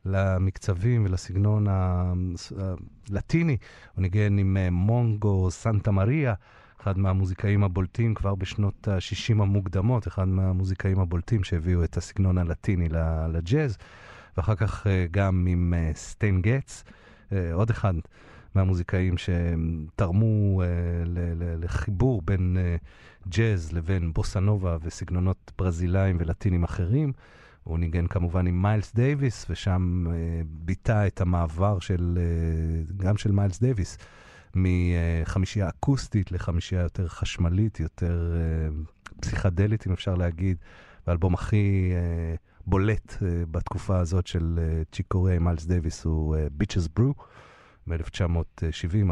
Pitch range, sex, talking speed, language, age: 85-100 Hz, male, 120 wpm, Hebrew, 40-59